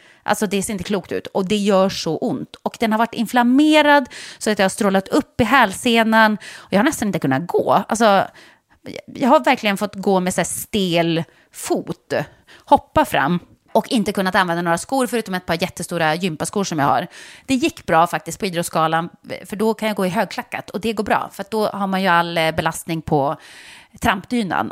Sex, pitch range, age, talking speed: female, 170-225 Hz, 30-49, 205 wpm